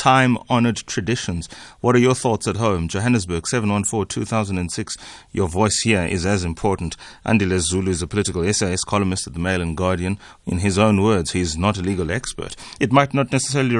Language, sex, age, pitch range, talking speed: English, male, 30-49, 95-125 Hz, 210 wpm